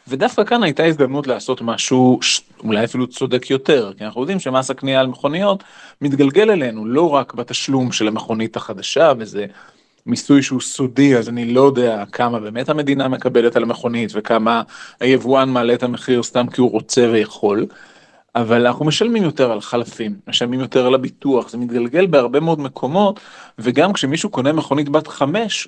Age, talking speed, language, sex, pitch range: 30-49, 165 wpm, Hebrew, male, 120-150 Hz